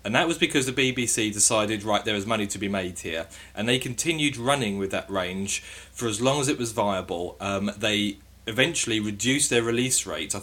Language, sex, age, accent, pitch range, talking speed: English, male, 30-49, British, 100-120 Hz, 215 wpm